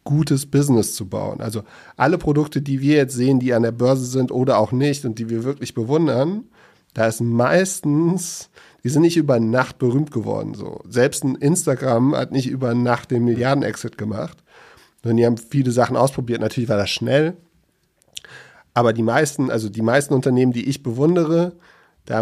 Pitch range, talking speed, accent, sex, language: 115-130 Hz, 180 wpm, German, male, German